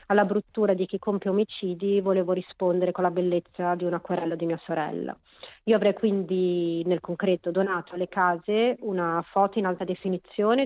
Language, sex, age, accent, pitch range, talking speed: Italian, female, 30-49, native, 170-195 Hz, 170 wpm